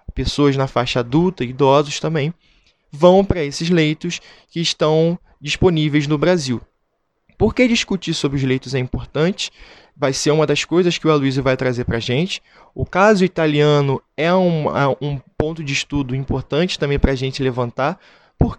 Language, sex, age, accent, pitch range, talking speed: Portuguese, male, 20-39, Brazilian, 135-160 Hz, 170 wpm